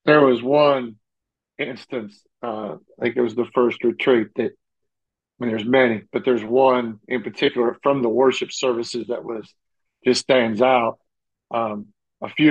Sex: male